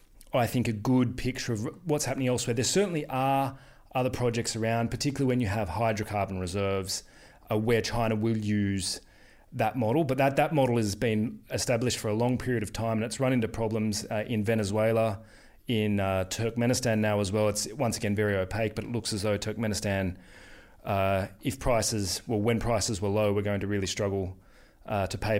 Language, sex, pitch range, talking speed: English, male, 100-120 Hz, 195 wpm